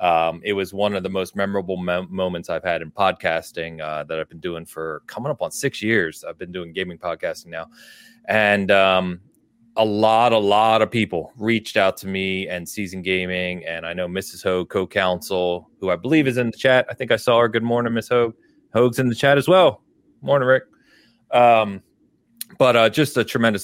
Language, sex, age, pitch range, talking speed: English, male, 30-49, 90-115 Hz, 215 wpm